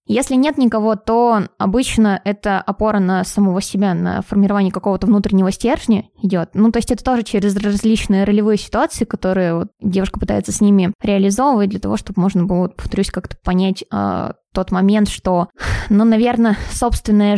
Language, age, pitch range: Russian, 20-39, 190-220 Hz